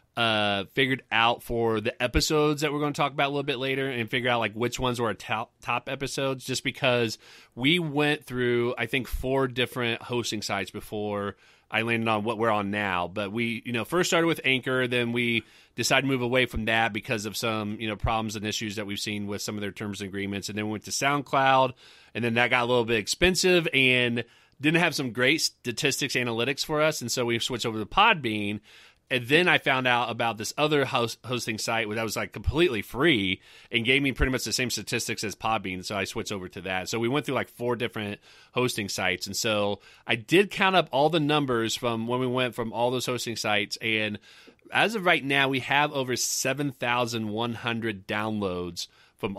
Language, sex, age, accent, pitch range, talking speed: English, male, 30-49, American, 110-135 Hz, 220 wpm